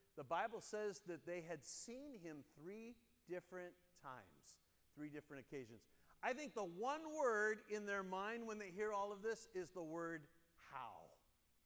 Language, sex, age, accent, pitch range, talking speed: English, male, 50-69, American, 145-200 Hz, 165 wpm